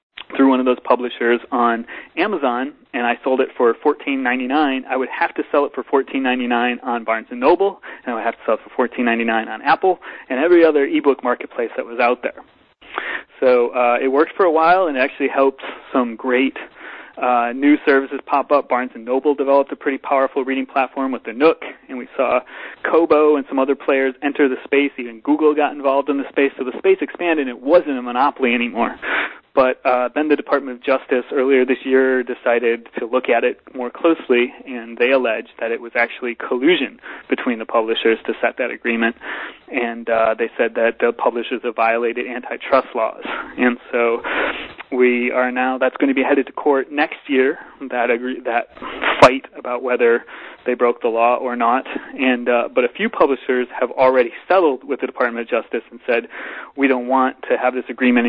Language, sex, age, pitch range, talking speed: English, male, 30-49, 120-140 Hz, 205 wpm